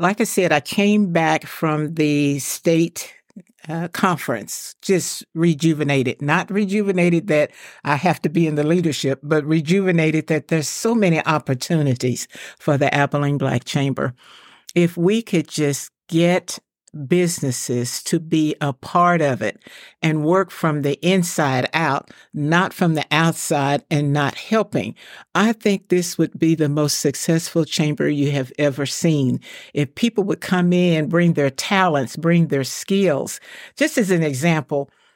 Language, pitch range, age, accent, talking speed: English, 150-185 Hz, 60-79, American, 150 wpm